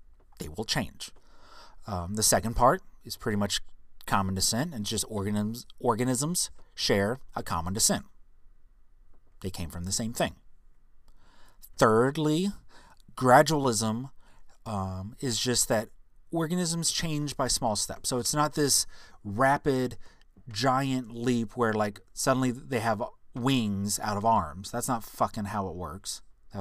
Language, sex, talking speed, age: English, male, 135 wpm, 30-49